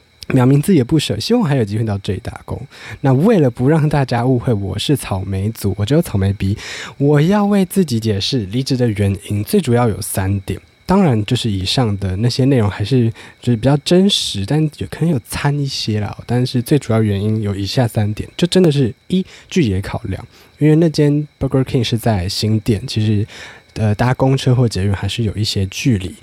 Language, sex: Chinese, male